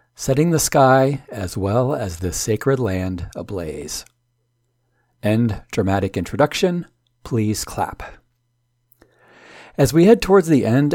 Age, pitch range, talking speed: 40-59, 105-135 Hz, 115 wpm